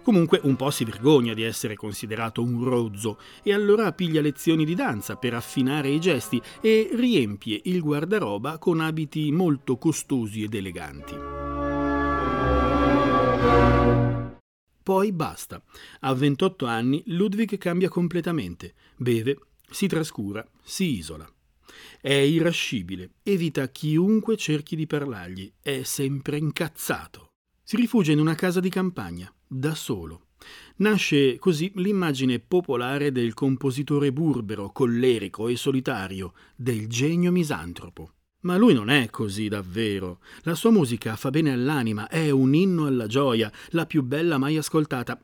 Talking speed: 130 wpm